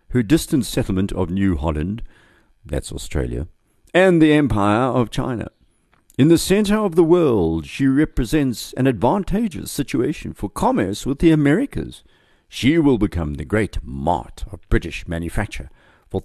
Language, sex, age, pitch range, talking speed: English, male, 60-79, 80-115 Hz, 145 wpm